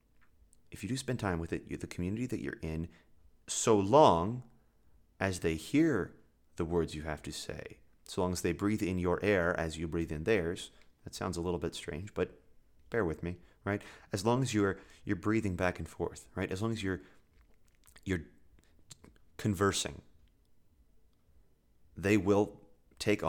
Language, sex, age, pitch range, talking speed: English, male, 30-49, 80-105 Hz, 175 wpm